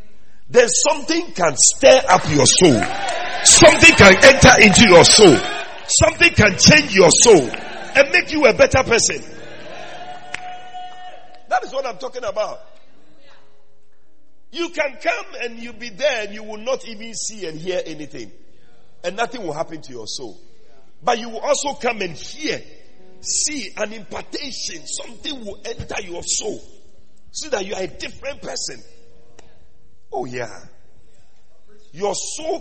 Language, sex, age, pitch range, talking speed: English, male, 50-69, 200-330 Hz, 145 wpm